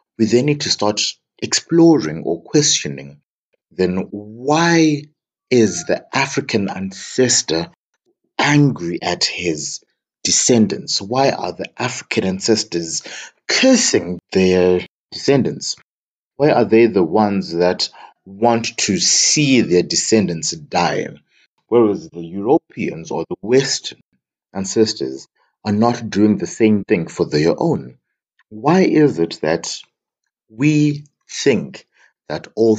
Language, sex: English, male